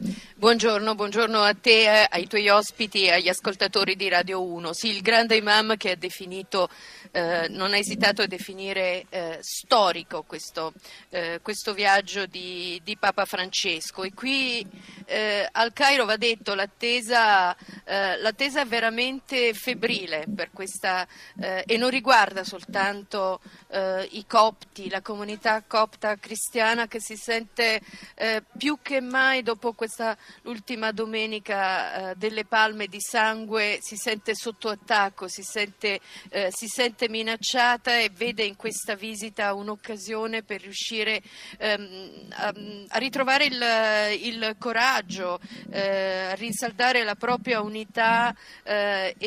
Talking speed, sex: 135 wpm, female